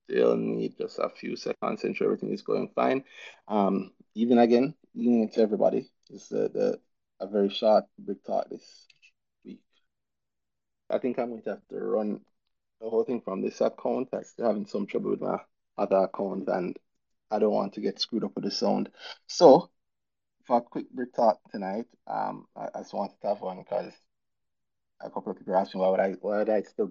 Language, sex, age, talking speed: English, male, 20-39, 200 wpm